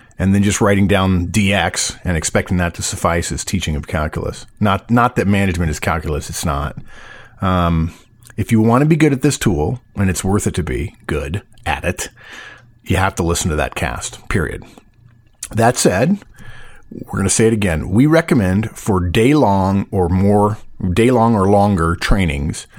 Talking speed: 185 wpm